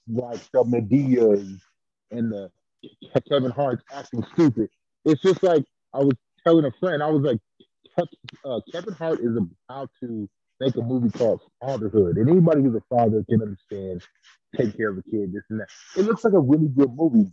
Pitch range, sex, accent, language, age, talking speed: 120-160 Hz, male, American, English, 30-49, 185 wpm